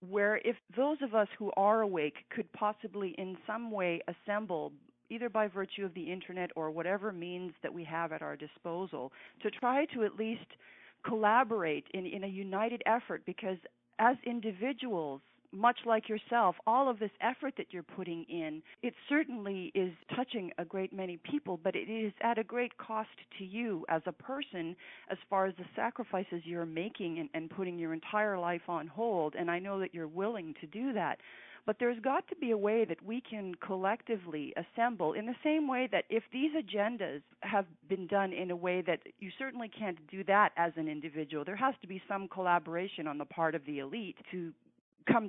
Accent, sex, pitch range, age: American, female, 170-225 Hz, 40-59